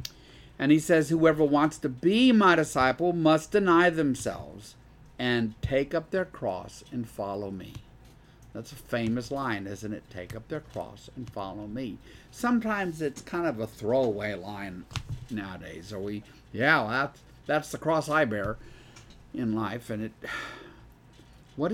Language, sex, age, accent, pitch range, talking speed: English, male, 50-69, American, 115-160 Hz, 155 wpm